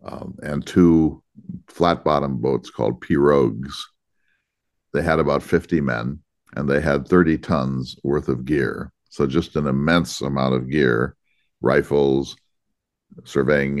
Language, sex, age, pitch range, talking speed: English, male, 50-69, 70-90 Hz, 125 wpm